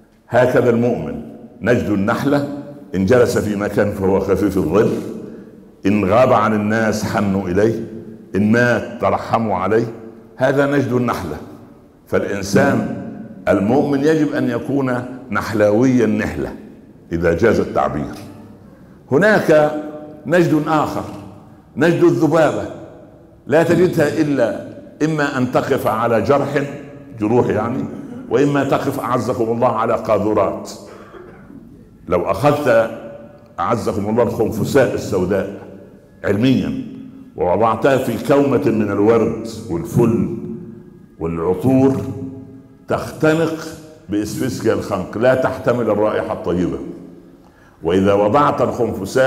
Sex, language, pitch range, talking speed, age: male, Arabic, 105-145 Hz, 95 wpm, 60-79